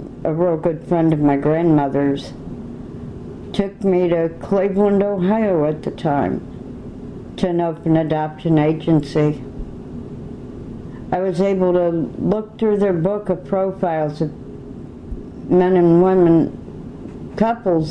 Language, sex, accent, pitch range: English, female, American, 155-190 Hz